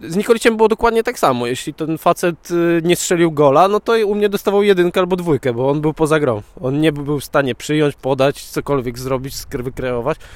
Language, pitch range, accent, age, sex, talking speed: Polish, 130-175 Hz, native, 20-39, male, 205 wpm